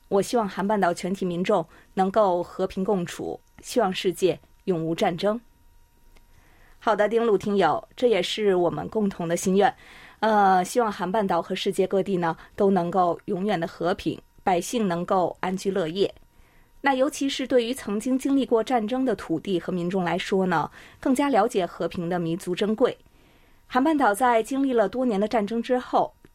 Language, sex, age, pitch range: Chinese, female, 20-39, 185-240 Hz